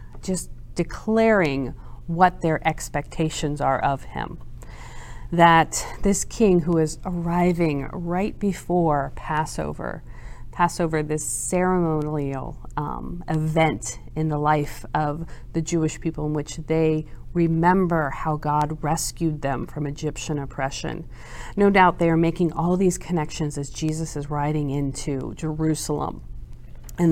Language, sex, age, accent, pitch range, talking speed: English, female, 40-59, American, 140-180 Hz, 120 wpm